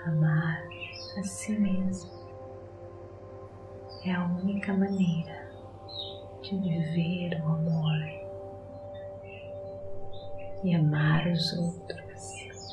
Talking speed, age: 75 wpm, 30-49